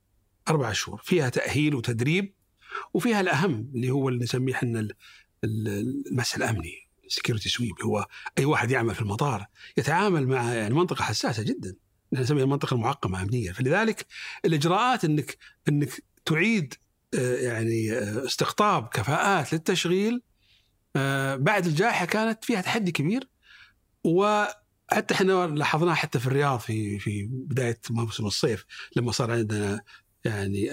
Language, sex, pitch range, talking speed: Arabic, male, 120-185 Hz, 120 wpm